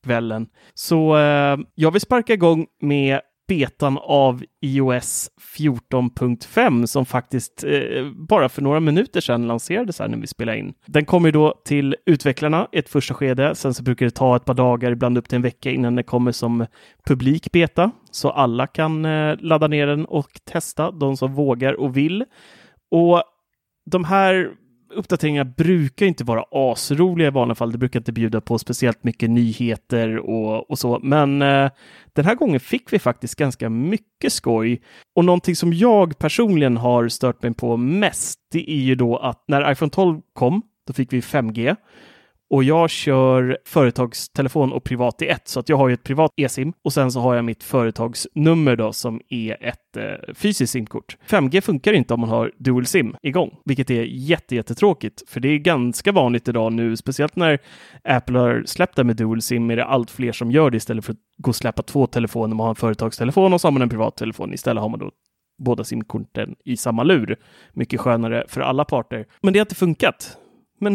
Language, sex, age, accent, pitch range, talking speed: English, male, 30-49, Swedish, 120-155 Hz, 190 wpm